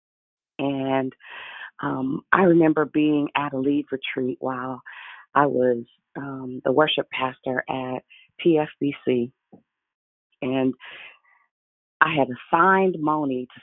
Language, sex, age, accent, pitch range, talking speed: English, female, 40-59, American, 135-220 Hz, 105 wpm